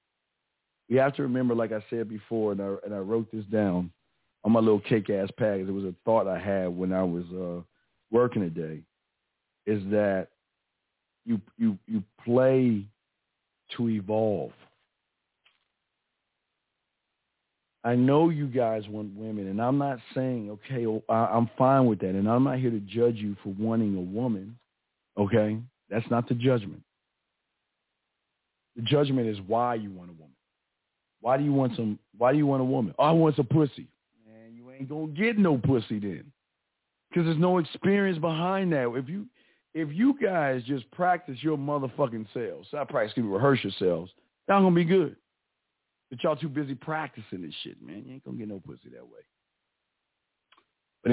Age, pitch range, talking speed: 50-69, 100-135 Hz, 170 wpm